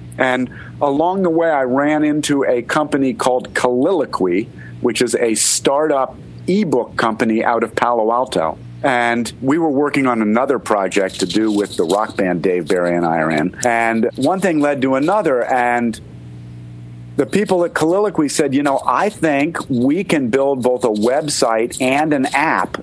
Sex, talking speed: male, 170 wpm